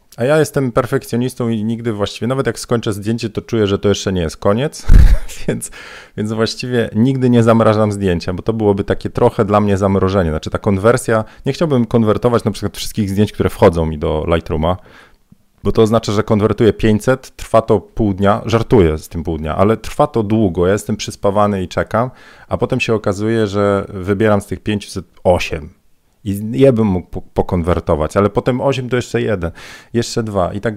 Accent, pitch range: native, 95-120 Hz